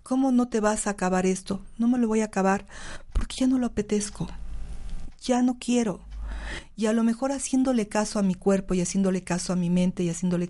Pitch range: 170-205 Hz